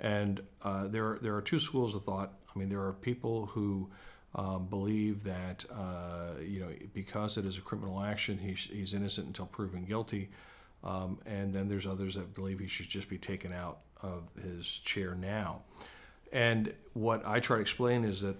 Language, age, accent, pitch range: English, 50-69, American, 95-105 Hz